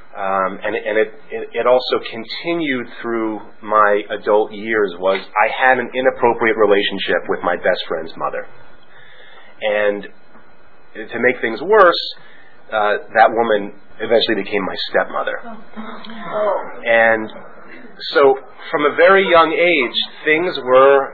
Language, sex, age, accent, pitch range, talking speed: English, male, 30-49, American, 105-145 Hz, 120 wpm